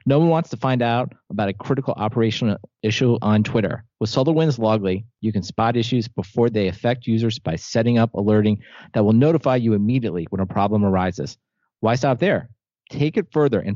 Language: English